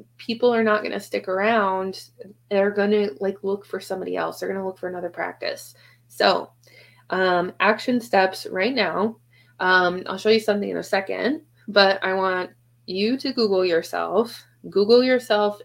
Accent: American